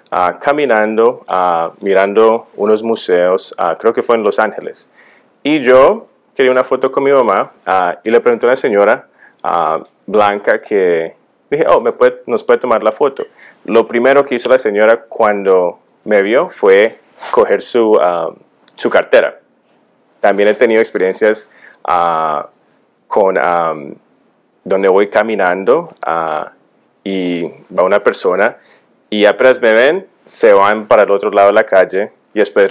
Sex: male